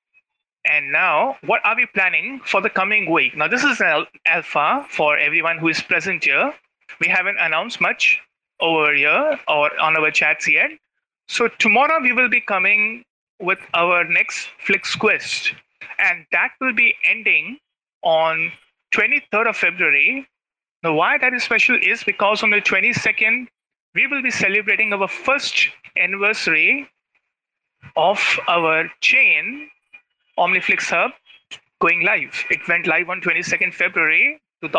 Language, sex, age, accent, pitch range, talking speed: English, male, 30-49, Indian, 165-250 Hz, 140 wpm